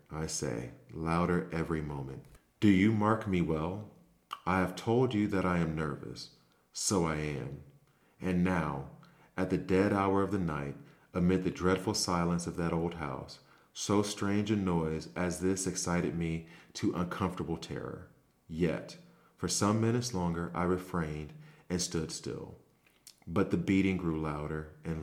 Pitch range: 80-95 Hz